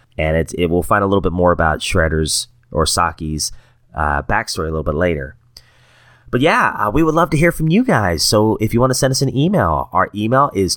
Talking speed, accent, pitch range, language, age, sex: 235 wpm, American, 90-140 Hz, English, 30-49, male